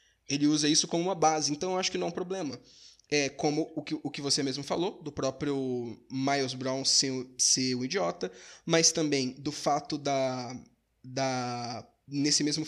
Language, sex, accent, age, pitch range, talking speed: Portuguese, male, Brazilian, 20-39, 135-165 Hz, 180 wpm